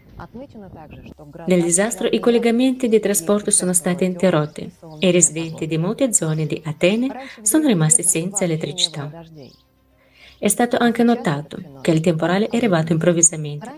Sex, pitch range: female, 160-205 Hz